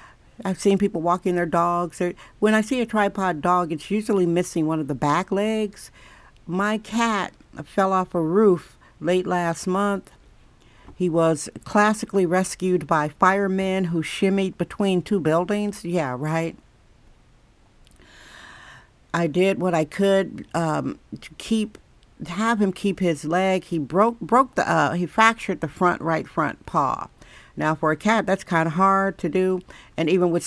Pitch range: 165-195 Hz